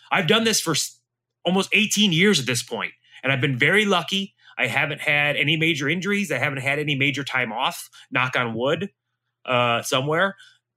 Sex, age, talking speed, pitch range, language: male, 20-39, 185 wpm, 120-165 Hz, English